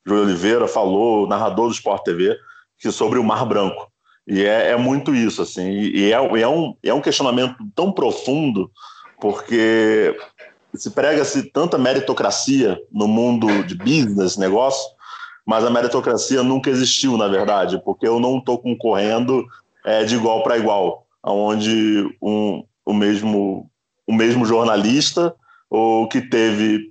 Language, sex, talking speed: Portuguese, male, 145 wpm